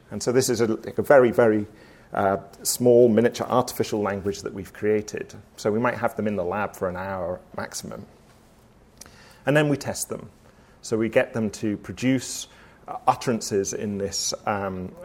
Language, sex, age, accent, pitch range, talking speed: English, male, 40-59, British, 105-140 Hz, 170 wpm